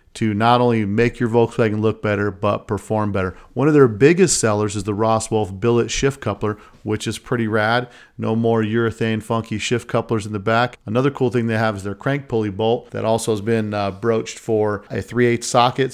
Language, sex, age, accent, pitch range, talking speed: English, male, 40-59, American, 105-120 Hz, 215 wpm